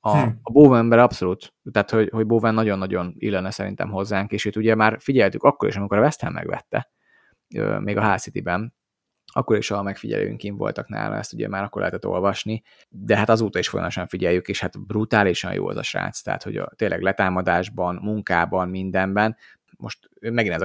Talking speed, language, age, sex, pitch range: 190 wpm, English, 30-49, male, 95-110 Hz